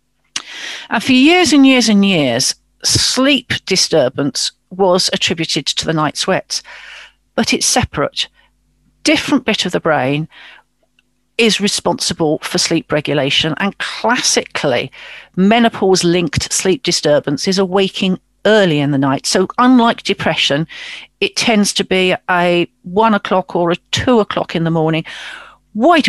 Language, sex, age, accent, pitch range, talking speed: English, female, 50-69, British, 165-235 Hz, 135 wpm